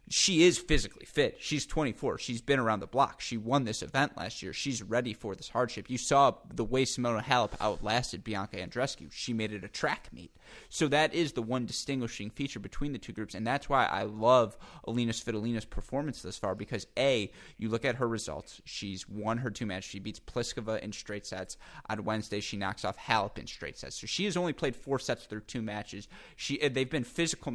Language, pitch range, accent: English, 105-125 Hz, American